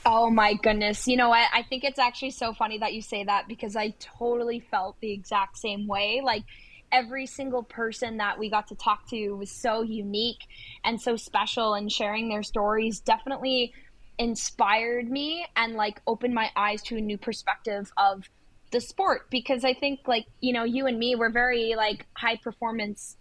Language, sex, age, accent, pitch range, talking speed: English, female, 10-29, American, 210-240 Hz, 190 wpm